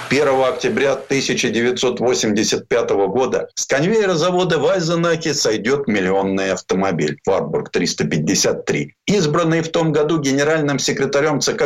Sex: male